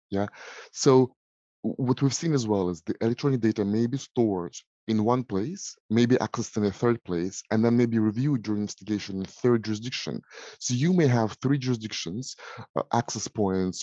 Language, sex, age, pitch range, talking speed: English, male, 30-49, 100-120 Hz, 180 wpm